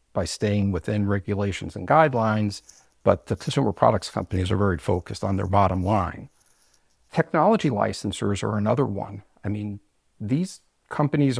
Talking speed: 140 wpm